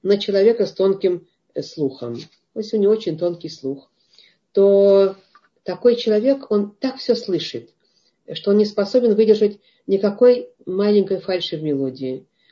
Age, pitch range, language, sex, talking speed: 40-59, 150-205 Hz, Russian, female, 140 wpm